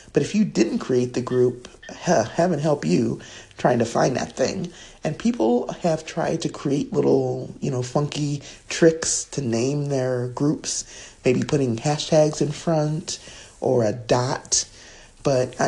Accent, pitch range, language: American, 125-175 Hz, English